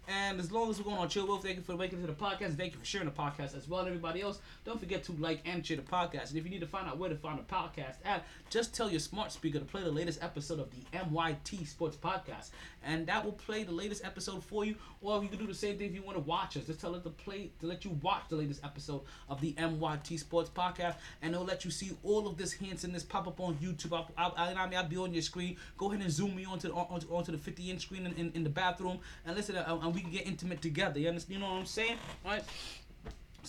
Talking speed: 290 wpm